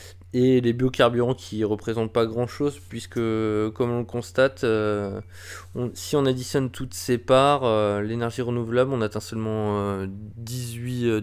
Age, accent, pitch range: 20-39, French, 100-125 Hz